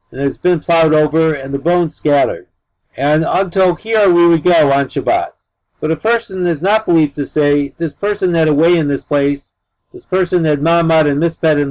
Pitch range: 145-180 Hz